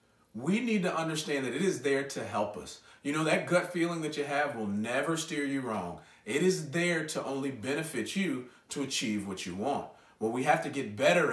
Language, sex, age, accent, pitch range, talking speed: English, male, 40-59, American, 105-165 Hz, 220 wpm